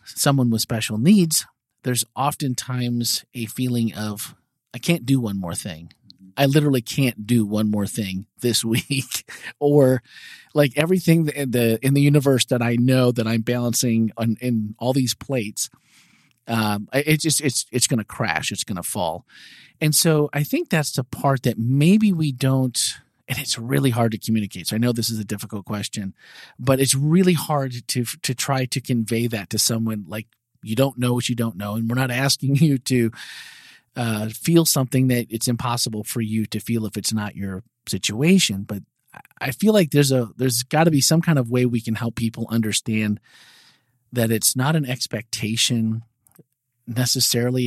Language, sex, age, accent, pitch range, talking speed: English, male, 40-59, American, 110-135 Hz, 185 wpm